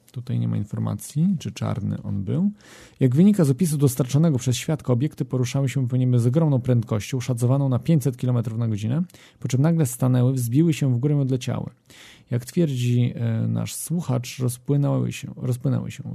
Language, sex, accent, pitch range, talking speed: Polish, male, native, 120-145 Hz, 165 wpm